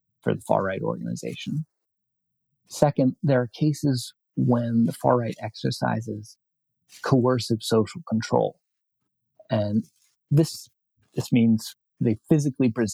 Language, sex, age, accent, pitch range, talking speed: English, male, 30-49, American, 110-130 Hz, 95 wpm